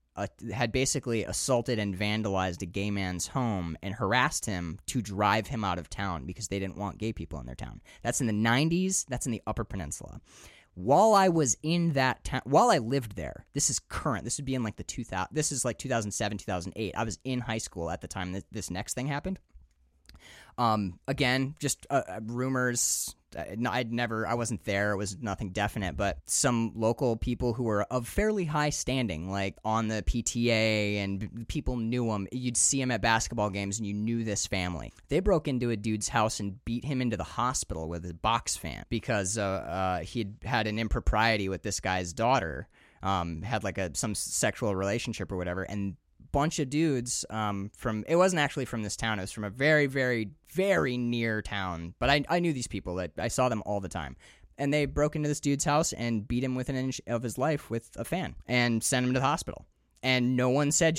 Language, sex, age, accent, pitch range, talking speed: English, male, 20-39, American, 95-125 Hz, 220 wpm